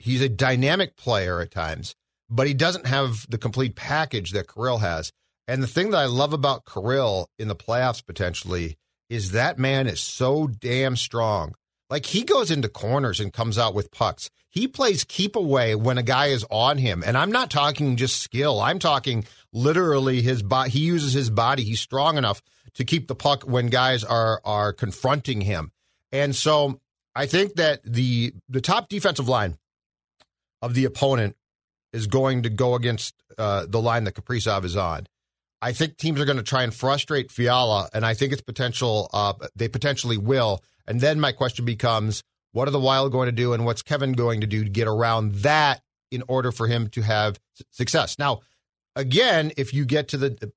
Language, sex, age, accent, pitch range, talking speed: English, male, 40-59, American, 110-135 Hz, 195 wpm